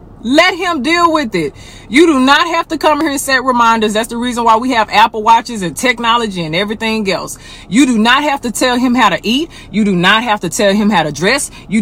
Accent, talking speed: American, 250 wpm